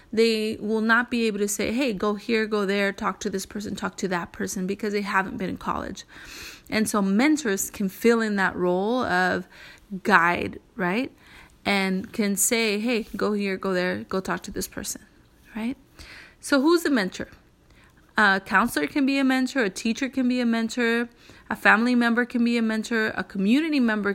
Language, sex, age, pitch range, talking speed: English, female, 20-39, 195-245 Hz, 190 wpm